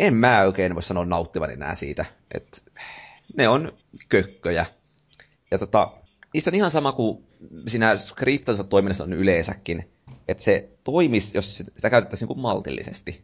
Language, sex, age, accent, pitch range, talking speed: Finnish, male, 30-49, native, 90-110 Hz, 145 wpm